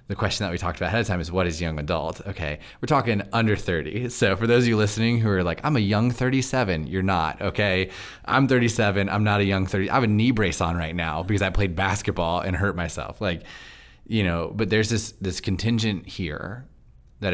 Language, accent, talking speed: English, American, 230 wpm